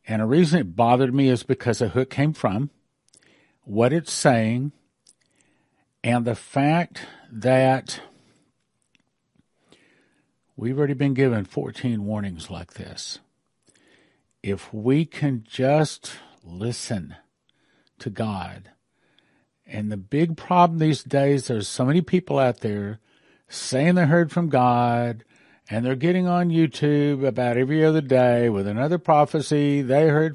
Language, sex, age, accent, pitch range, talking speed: English, male, 50-69, American, 115-140 Hz, 130 wpm